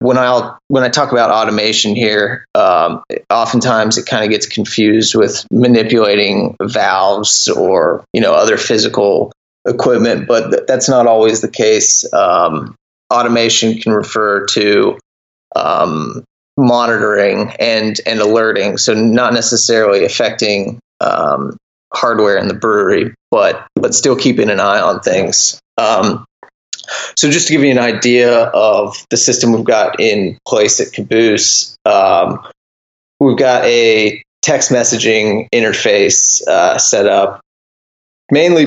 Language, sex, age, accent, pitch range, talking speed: English, male, 30-49, American, 110-125 Hz, 135 wpm